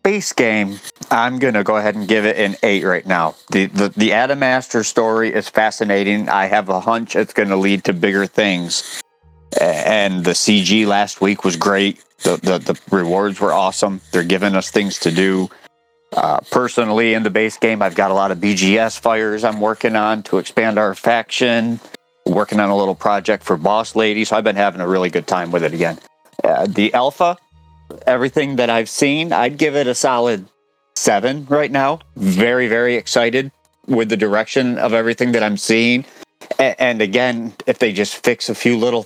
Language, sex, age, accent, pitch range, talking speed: English, male, 40-59, American, 100-125 Hz, 195 wpm